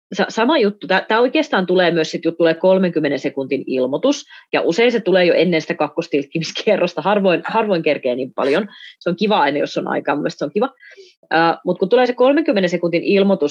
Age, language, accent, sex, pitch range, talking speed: 30-49, Finnish, native, female, 160-225 Hz, 180 wpm